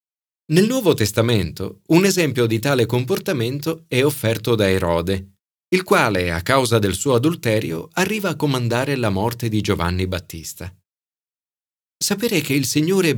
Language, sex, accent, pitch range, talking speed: Italian, male, native, 95-135 Hz, 140 wpm